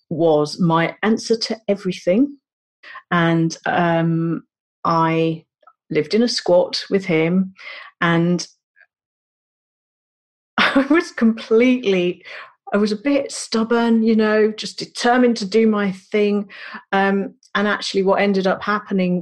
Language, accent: English, British